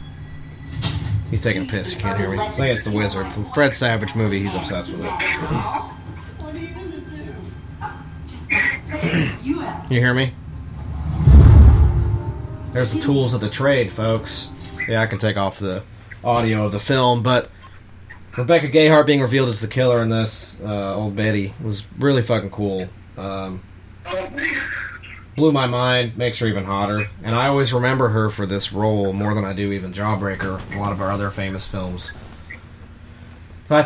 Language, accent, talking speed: English, American, 160 wpm